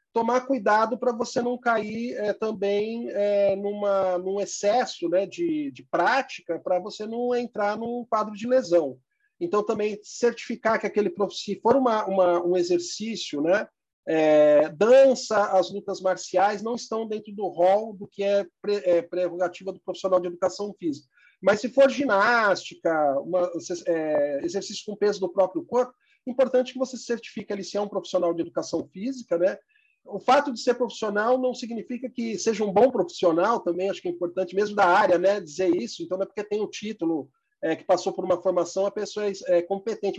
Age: 40-59